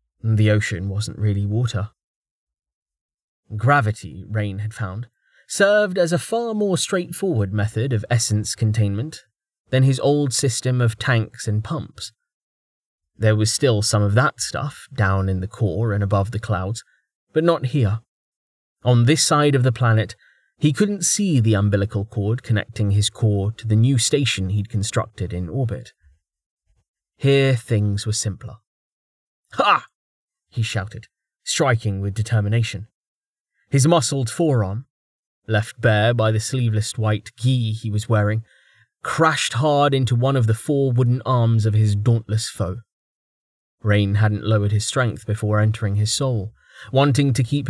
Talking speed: 145 wpm